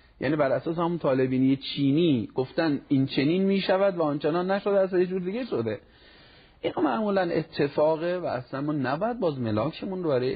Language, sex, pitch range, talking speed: Persian, male, 120-155 Hz, 175 wpm